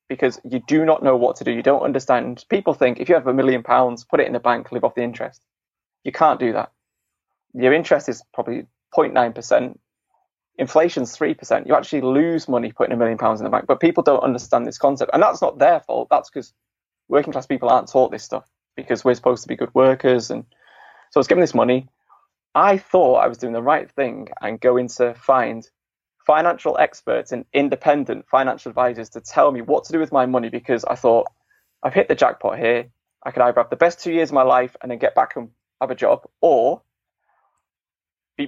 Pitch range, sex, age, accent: 120-135 Hz, male, 20-39, British